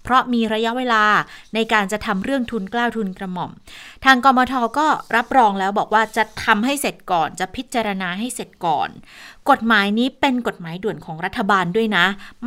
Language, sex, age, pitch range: Thai, female, 20-39, 180-235 Hz